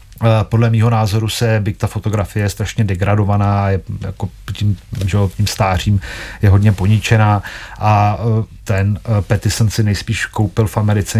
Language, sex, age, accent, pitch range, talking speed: Czech, male, 40-59, native, 95-105 Hz, 140 wpm